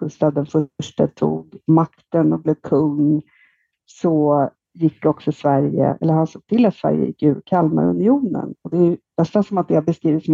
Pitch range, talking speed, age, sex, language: 155-200 Hz, 170 wpm, 50-69, female, Swedish